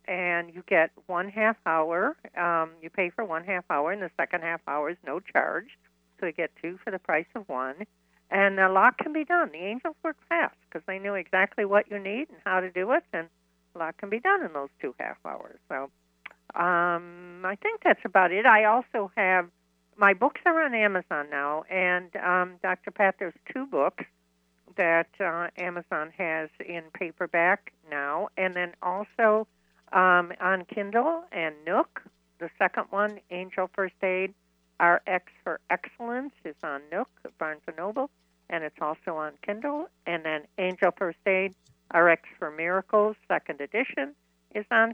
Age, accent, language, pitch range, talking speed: 60-79, American, English, 160-215 Hz, 180 wpm